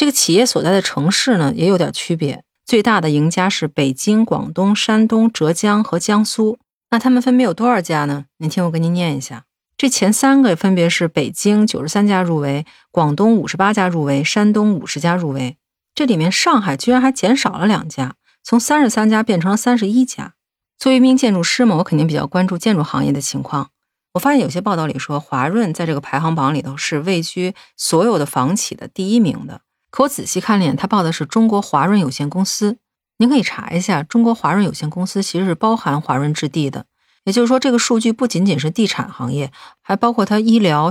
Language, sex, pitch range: Chinese, female, 155-215 Hz